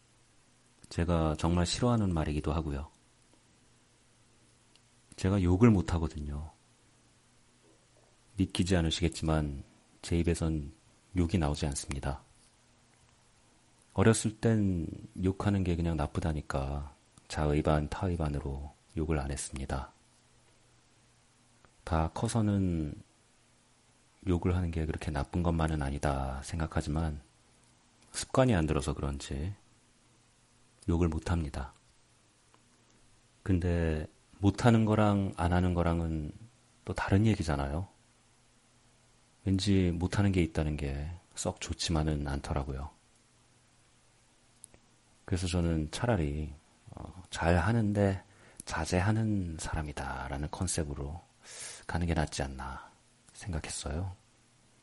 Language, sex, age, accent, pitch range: Korean, male, 40-59, native, 75-100 Hz